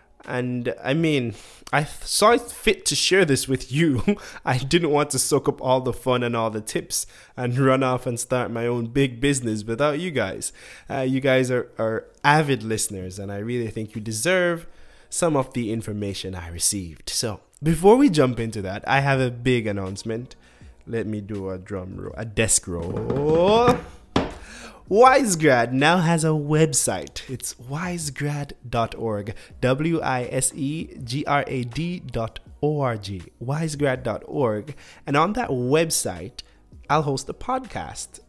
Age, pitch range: 20-39, 115-150 Hz